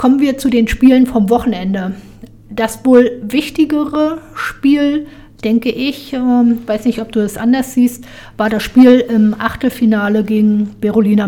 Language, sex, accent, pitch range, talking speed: German, female, German, 210-240 Hz, 145 wpm